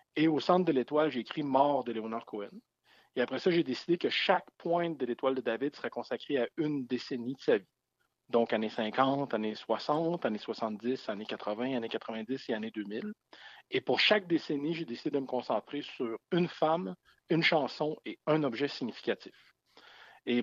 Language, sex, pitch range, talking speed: French, male, 120-160 Hz, 190 wpm